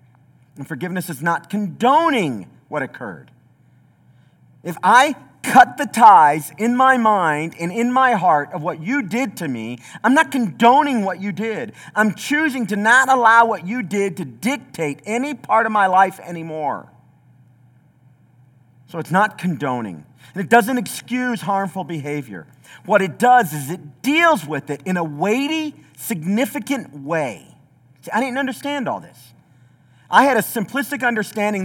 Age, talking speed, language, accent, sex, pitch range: 40-59, 155 wpm, English, American, male, 150-240 Hz